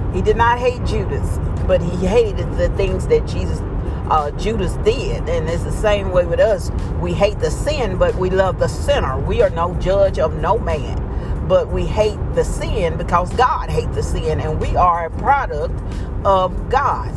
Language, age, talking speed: English, 40-59, 190 wpm